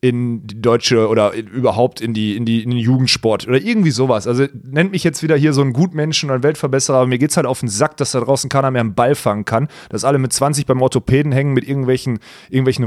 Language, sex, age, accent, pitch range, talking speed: German, male, 30-49, German, 115-140 Hz, 255 wpm